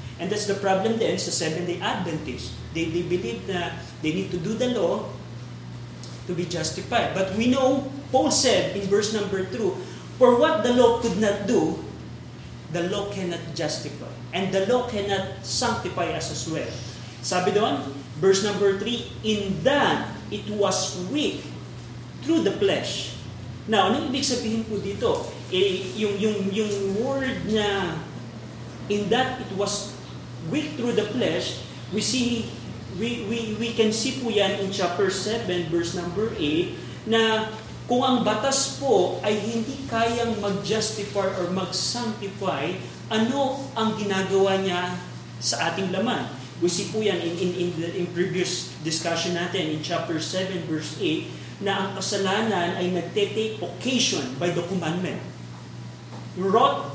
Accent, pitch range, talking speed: native, 170-220 Hz, 150 wpm